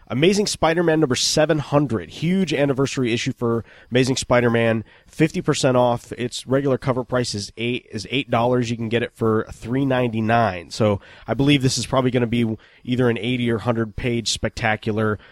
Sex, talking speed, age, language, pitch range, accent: male, 165 wpm, 30-49, English, 105-130 Hz, American